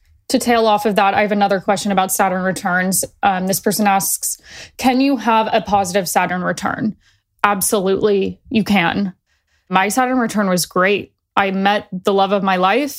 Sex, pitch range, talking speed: female, 195-230 Hz, 175 wpm